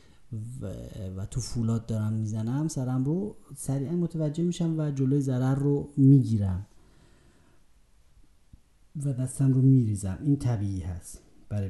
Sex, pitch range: male, 105-145 Hz